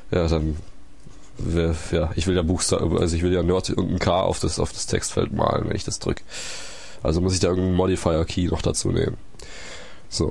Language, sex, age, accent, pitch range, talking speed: German, male, 20-39, German, 85-100 Hz, 210 wpm